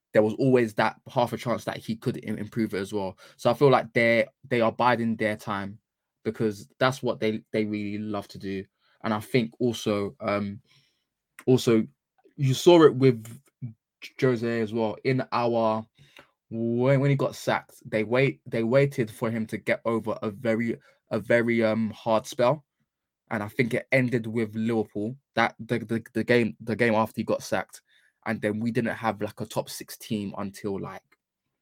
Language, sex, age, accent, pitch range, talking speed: English, male, 20-39, British, 105-120 Hz, 190 wpm